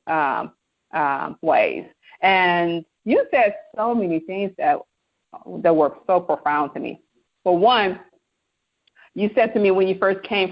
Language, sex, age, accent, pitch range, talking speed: English, female, 40-59, American, 165-200 Hz, 150 wpm